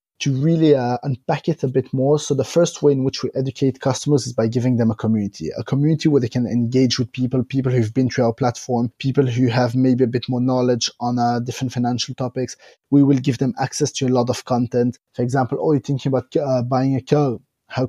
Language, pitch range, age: English, 125-145 Hz, 30-49